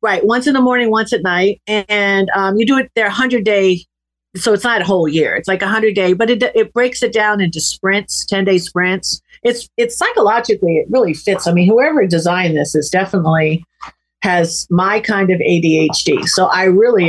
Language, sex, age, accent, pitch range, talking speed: English, female, 50-69, American, 180-245 Hz, 205 wpm